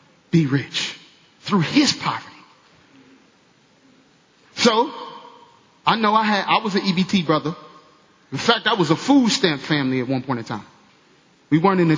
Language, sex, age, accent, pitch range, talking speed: English, male, 30-49, American, 155-235 Hz, 160 wpm